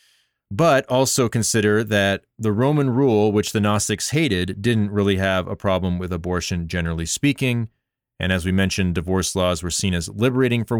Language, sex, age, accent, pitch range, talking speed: English, male, 30-49, American, 95-115 Hz, 170 wpm